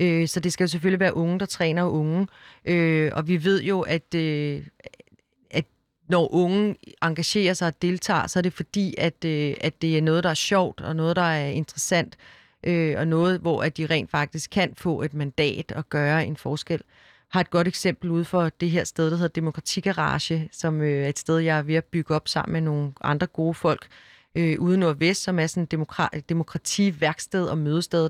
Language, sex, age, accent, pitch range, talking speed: Danish, female, 30-49, native, 160-185 Hz, 195 wpm